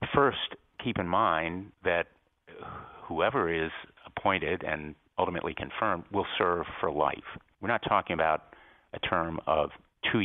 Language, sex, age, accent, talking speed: English, male, 50-69, American, 135 wpm